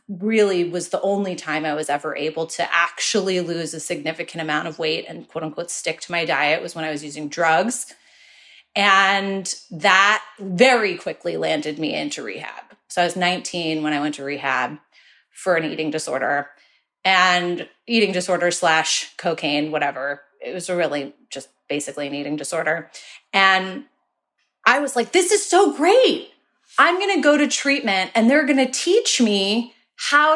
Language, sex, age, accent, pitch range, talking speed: English, female, 30-49, American, 160-245 Hz, 170 wpm